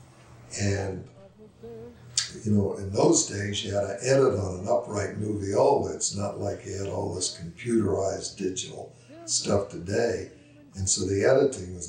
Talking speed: 155 wpm